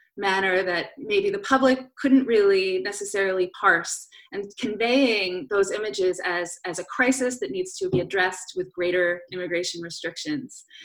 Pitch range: 175-245 Hz